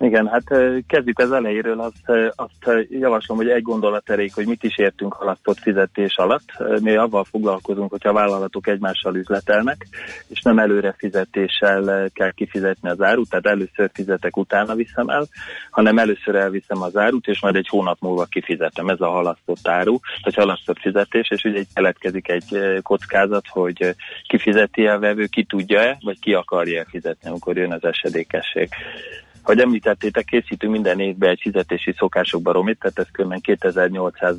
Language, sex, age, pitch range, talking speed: Hungarian, male, 30-49, 90-105 Hz, 155 wpm